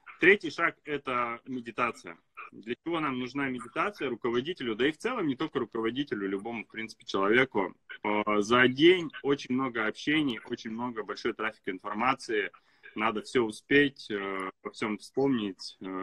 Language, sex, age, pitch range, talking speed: Russian, male, 20-39, 110-145 Hz, 140 wpm